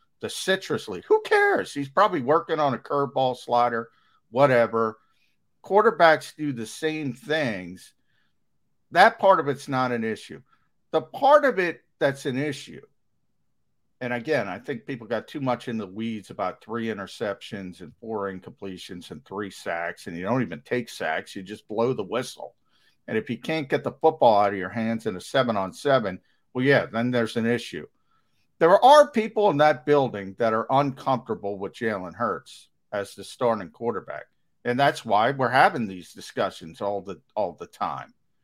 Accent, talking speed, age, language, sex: American, 170 wpm, 50-69, English, male